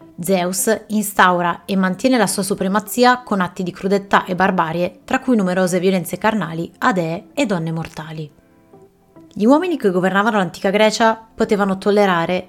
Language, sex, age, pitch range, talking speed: Italian, female, 20-39, 180-225 Hz, 150 wpm